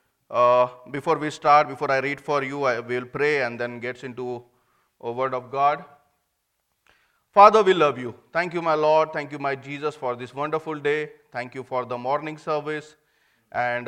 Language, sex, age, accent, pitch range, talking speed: English, male, 30-49, Indian, 130-160 Hz, 185 wpm